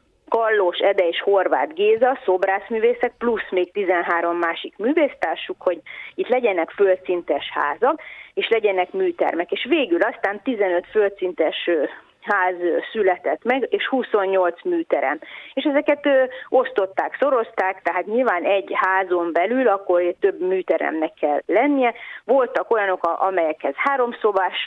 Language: Hungarian